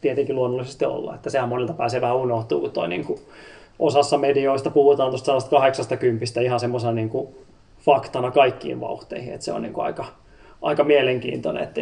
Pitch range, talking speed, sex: 120-140 Hz, 150 wpm, male